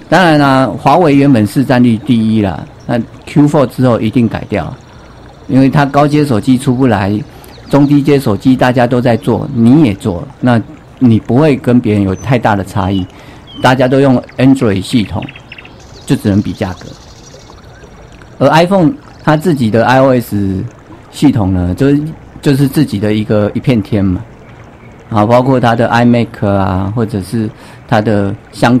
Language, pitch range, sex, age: Chinese, 105-135 Hz, male, 50-69